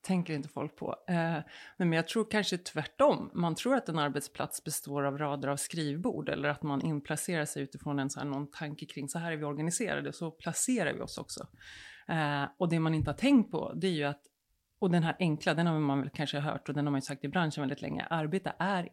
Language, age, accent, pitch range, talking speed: English, 30-49, Swedish, 140-180 Hz, 230 wpm